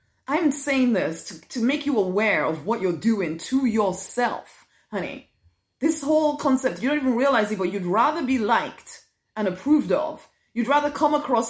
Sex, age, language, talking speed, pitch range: female, 20-39, English, 185 wpm, 175-245 Hz